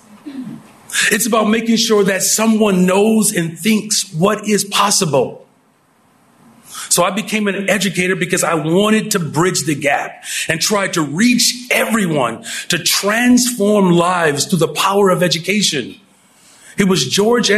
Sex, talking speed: male, 135 wpm